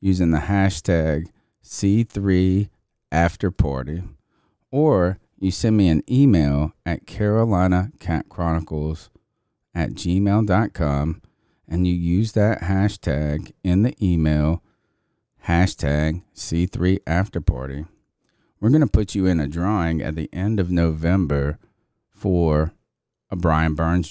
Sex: male